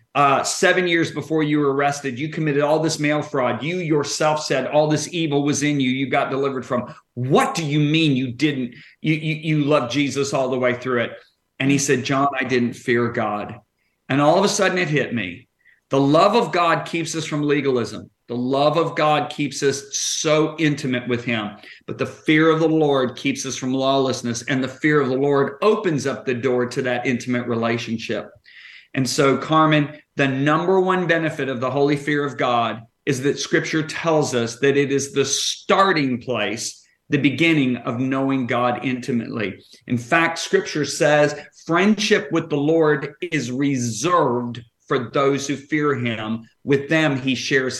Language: English